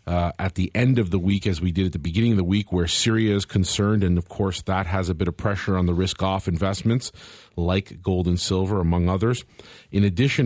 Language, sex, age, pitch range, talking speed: English, male, 40-59, 90-105 Hz, 235 wpm